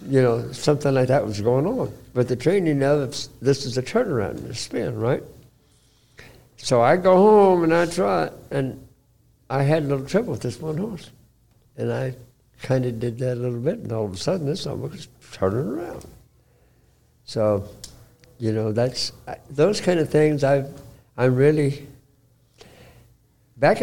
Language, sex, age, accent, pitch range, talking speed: English, male, 60-79, American, 115-135 Hz, 175 wpm